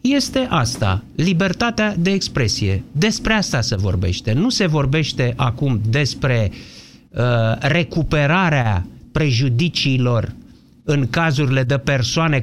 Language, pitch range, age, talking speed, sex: Romanian, 125-190 Hz, 50-69, 95 wpm, male